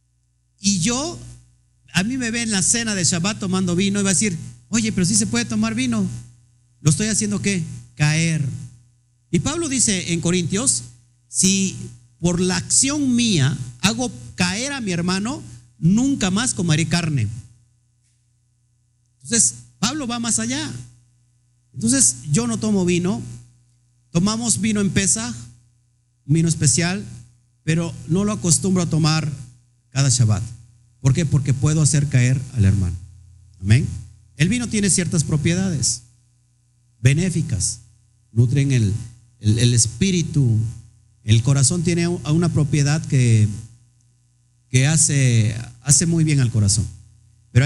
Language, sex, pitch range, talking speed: Spanish, male, 120-175 Hz, 135 wpm